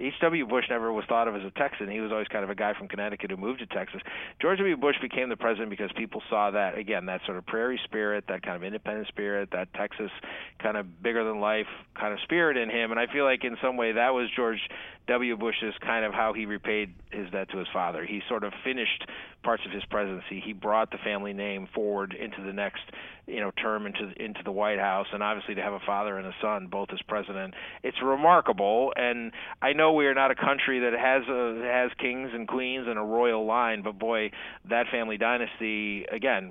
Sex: male